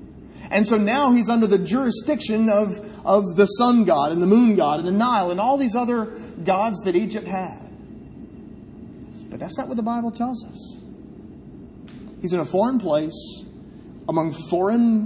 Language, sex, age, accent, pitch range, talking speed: English, male, 40-59, American, 190-240 Hz, 165 wpm